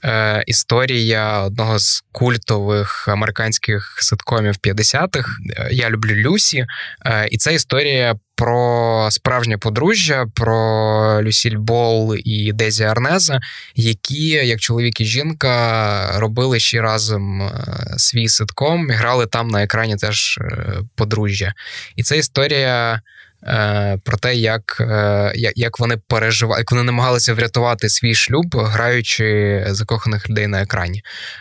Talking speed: 110 wpm